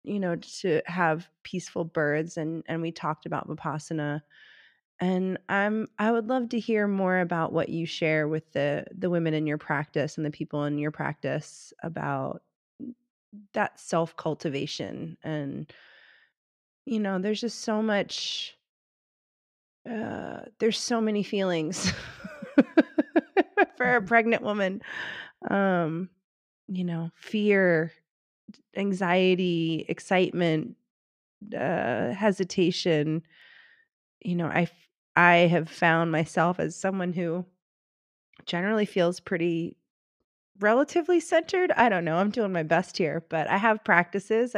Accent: American